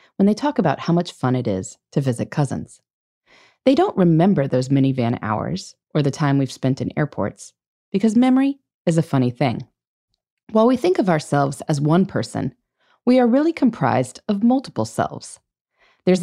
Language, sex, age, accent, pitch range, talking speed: English, female, 30-49, American, 140-235 Hz, 175 wpm